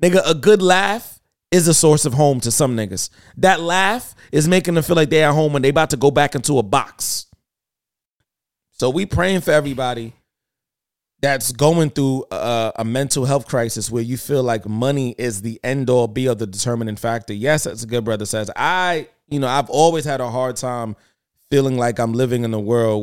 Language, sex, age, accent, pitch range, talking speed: English, male, 20-39, American, 115-140 Hz, 210 wpm